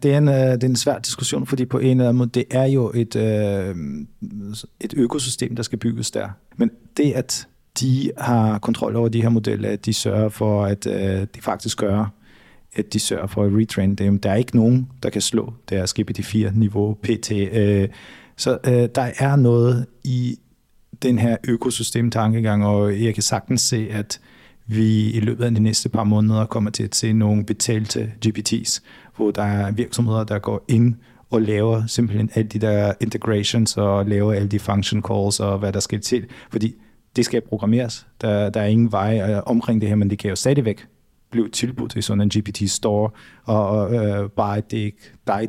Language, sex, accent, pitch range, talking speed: Danish, male, native, 105-120 Hz, 195 wpm